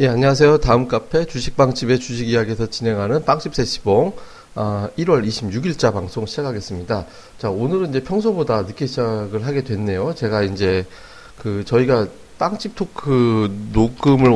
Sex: male